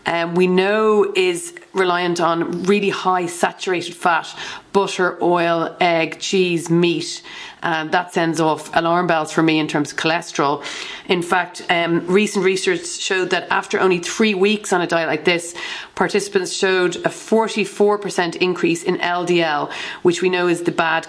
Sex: female